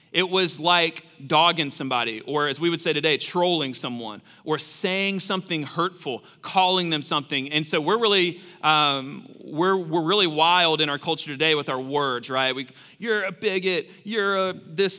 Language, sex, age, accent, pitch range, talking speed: English, male, 40-59, American, 145-190 Hz, 175 wpm